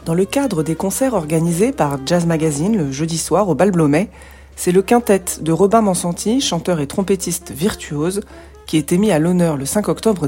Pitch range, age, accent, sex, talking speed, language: 155-220 Hz, 40-59, French, female, 185 wpm, French